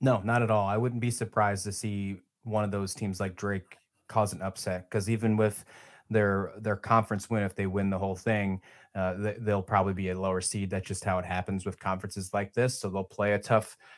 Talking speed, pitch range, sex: 230 wpm, 100-135 Hz, male